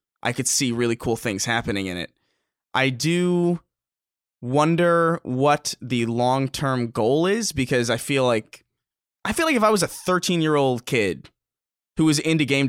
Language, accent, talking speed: English, American, 160 wpm